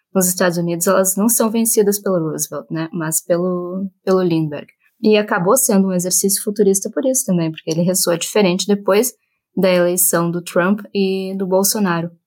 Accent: Brazilian